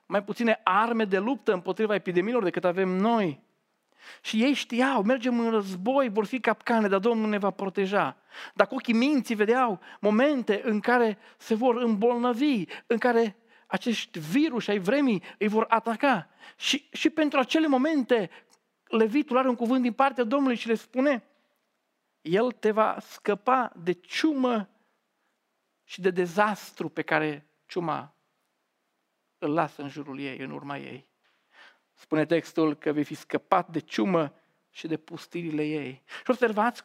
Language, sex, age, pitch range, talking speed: Romanian, male, 50-69, 180-235 Hz, 150 wpm